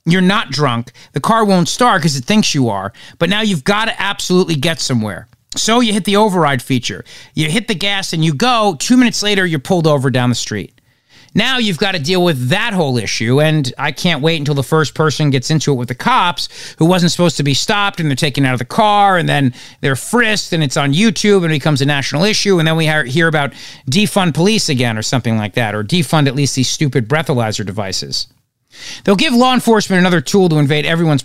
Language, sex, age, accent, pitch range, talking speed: English, male, 40-59, American, 130-185 Hz, 230 wpm